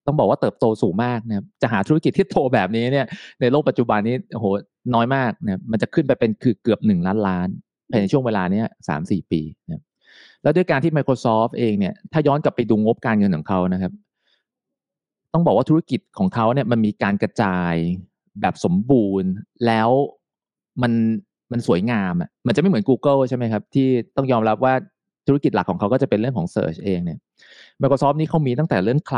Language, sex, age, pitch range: Thai, male, 30-49, 100-140 Hz